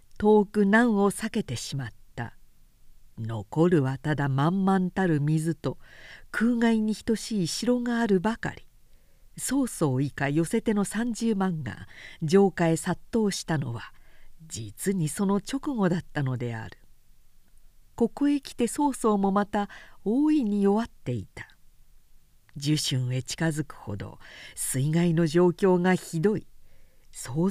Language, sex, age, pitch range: Japanese, female, 50-69, 140-205 Hz